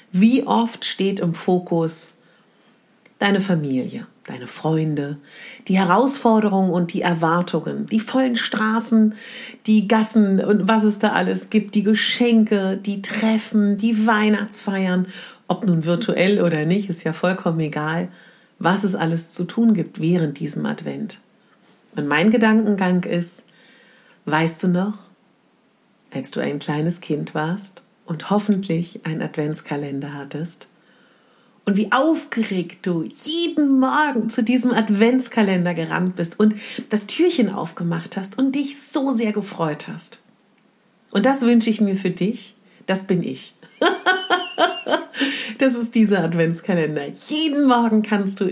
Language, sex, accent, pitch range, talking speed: German, female, German, 175-230 Hz, 130 wpm